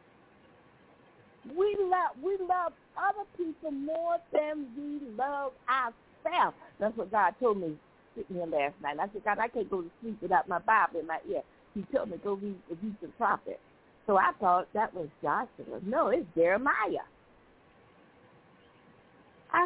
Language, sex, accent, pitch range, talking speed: English, female, American, 250-340 Hz, 160 wpm